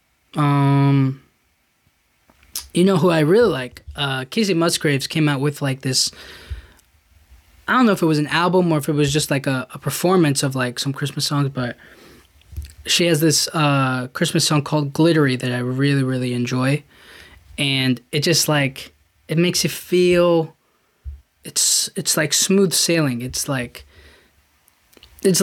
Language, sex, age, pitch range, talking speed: English, male, 20-39, 125-155 Hz, 160 wpm